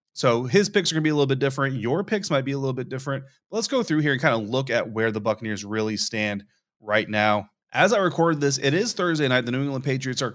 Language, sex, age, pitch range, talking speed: English, male, 30-49, 115-140 Hz, 280 wpm